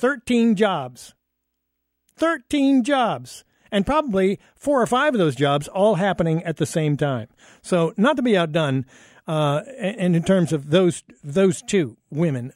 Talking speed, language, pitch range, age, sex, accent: 155 wpm, English, 145-195 Hz, 50-69, male, American